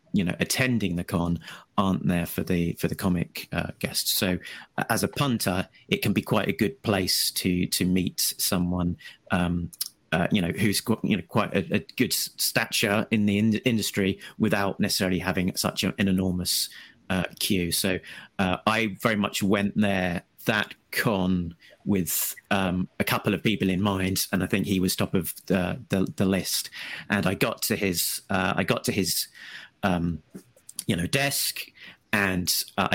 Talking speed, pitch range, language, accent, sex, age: 180 wpm, 95-105 Hz, English, British, male, 30-49